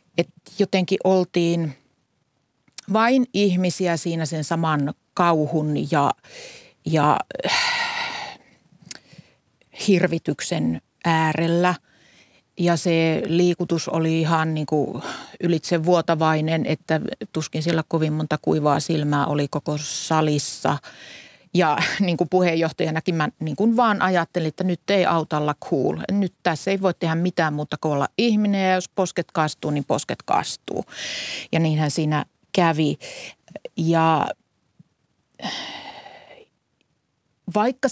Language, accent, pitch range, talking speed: Finnish, native, 155-185 Hz, 110 wpm